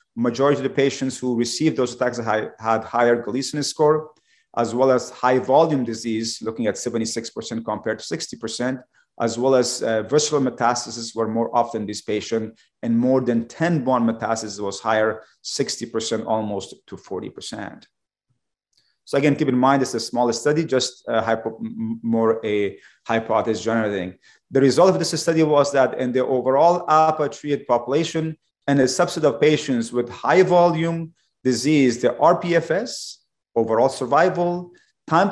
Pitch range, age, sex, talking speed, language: 115-150 Hz, 40-59, male, 150 wpm, English